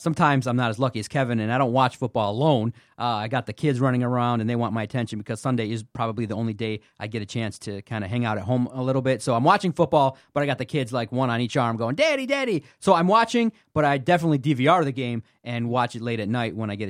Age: 30-49